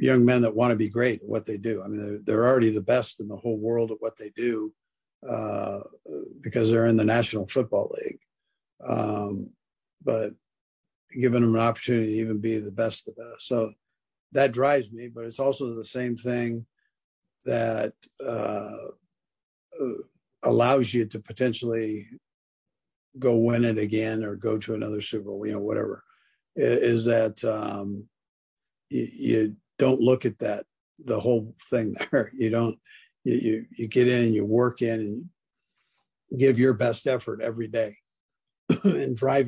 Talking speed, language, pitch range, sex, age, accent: 165 wpm, English, 110-120 Hz, male, 50-69, American